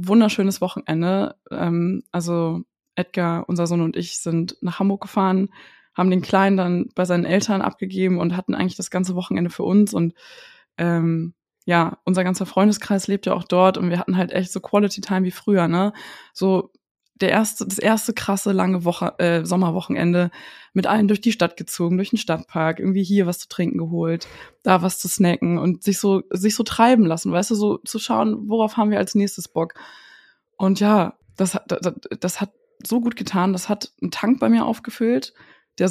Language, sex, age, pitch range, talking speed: German, female, 20-39, 180-210 Hz, 190 wpm